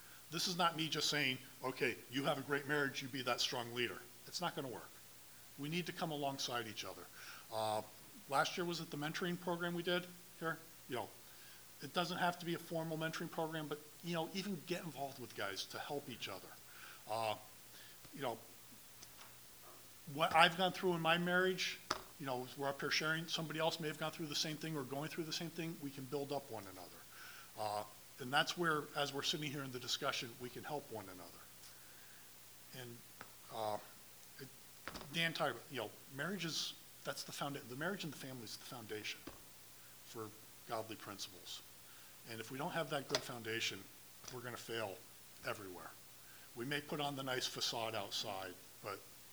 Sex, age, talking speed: male, 40-59, 190 wpm